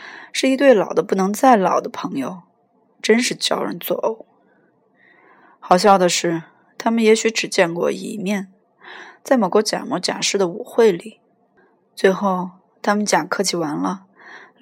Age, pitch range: 20-39, 185-240 Hz